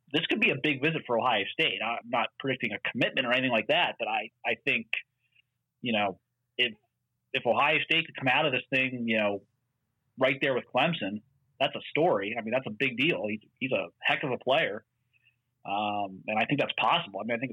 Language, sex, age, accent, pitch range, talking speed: English, male, 30-49, American, 110-125 Hz, 225 wpm